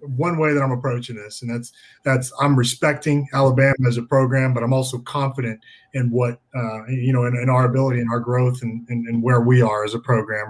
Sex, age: male, 20-39